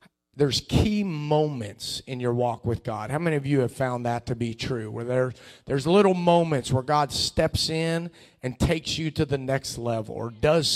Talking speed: 200 wpm